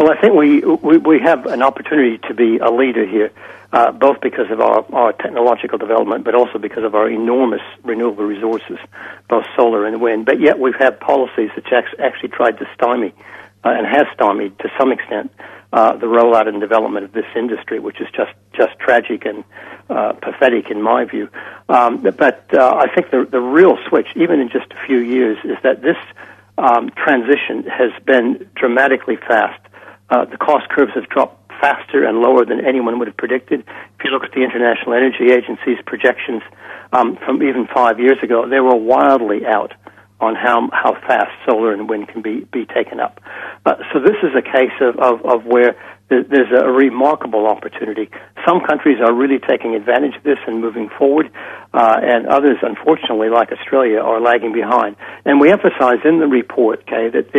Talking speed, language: 190 wpm, English